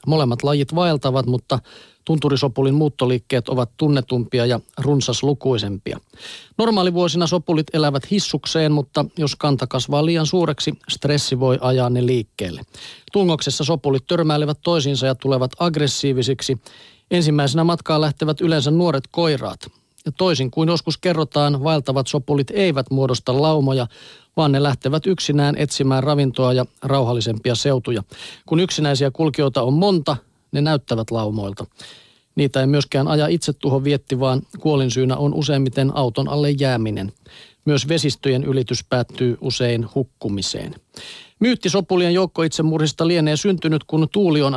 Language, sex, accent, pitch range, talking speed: Finnish, male, native, 130-155 Hz, 125 wpm